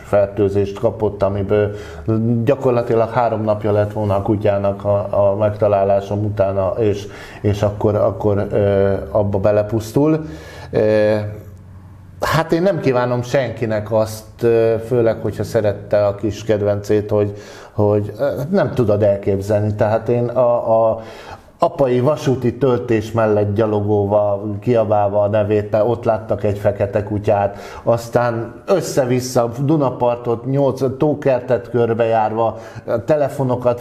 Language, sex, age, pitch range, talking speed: Hungarian, male, 50-69, 105-125 Hz, 110 wpm